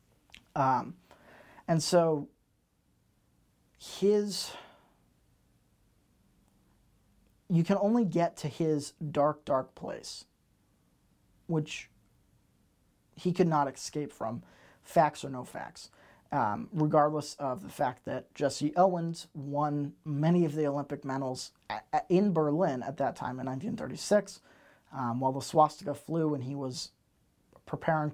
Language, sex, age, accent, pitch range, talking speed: English, male, 30-49, American, 135-165 Hz, 115 wpm